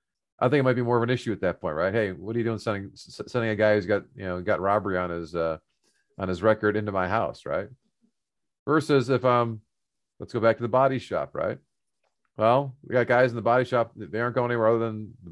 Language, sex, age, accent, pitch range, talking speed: English, male, 40-59, American, 105-130 Hz, 255 wpm